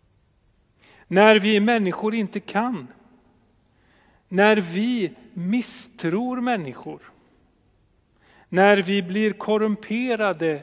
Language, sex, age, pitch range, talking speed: Swedish, male, 40-59, 125-195 Hz, 75 wpm